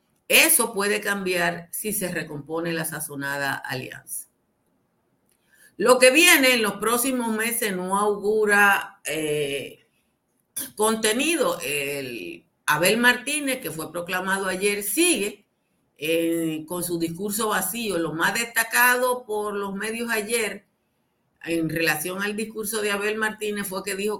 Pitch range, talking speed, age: 160-220 Hz, 120 wpm, 50-69